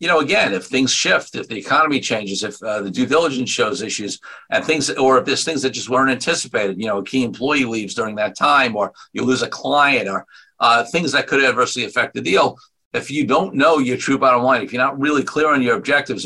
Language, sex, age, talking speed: English, male, 50-69, 245 wpm